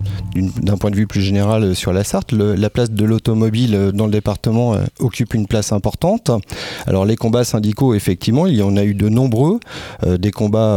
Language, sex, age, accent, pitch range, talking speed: French, male, 40-59, French, 105-135 Hz, 195 wpm